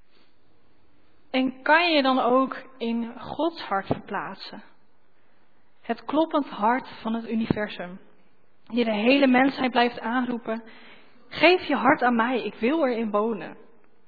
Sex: female